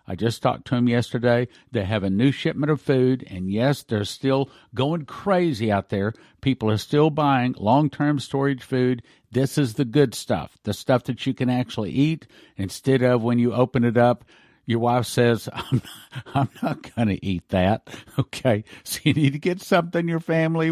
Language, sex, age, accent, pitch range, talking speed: English, male, 50-69, American, 115-145 Hz, 190 wpm